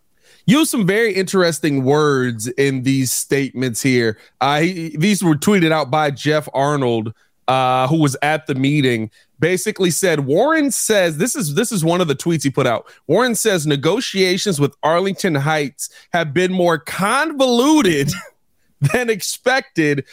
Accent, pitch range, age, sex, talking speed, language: American, 140-190 Hz, 30-49, male, 150 wpm, English